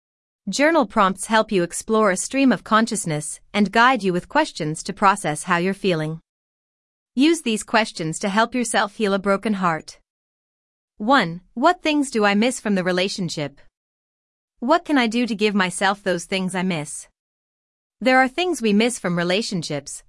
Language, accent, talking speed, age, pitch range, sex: English, American, 165 wpm, 30-49, 180-240 Hz, female